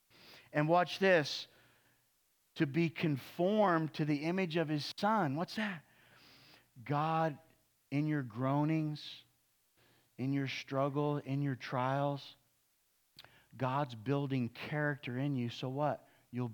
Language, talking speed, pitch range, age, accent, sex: English, 115 wpm, 125-150 Hz, 50-69, American, male